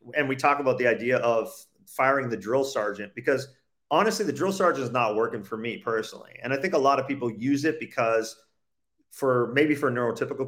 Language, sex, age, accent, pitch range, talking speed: English, male, 40-59, American, 120-150 Hz, 205 wpm